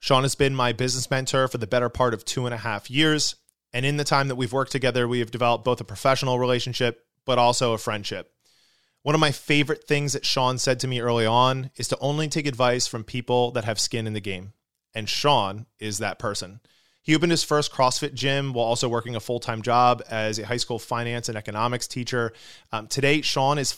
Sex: male